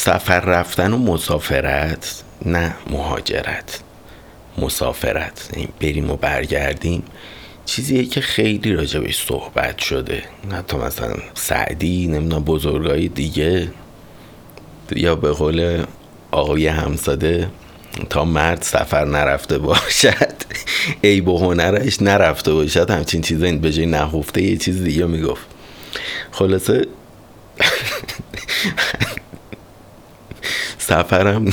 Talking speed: 95 wpm